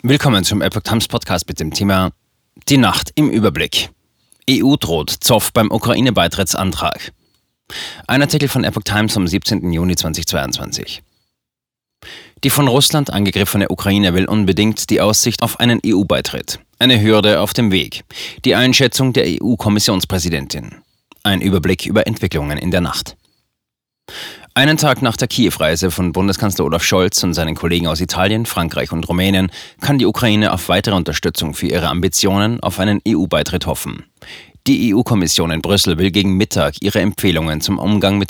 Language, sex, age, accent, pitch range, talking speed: German, male, 30-49, German, 90-105 Hz, 150 wpm